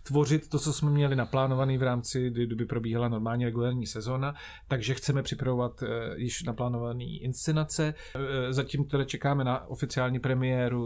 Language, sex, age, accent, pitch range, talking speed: Czech, male, 30-49, native, 115-130 Hz, 140 wpm